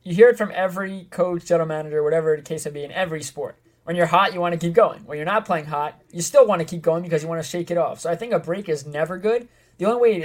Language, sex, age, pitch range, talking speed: English, male, 20-39, 150-175 Hz, 315 wpm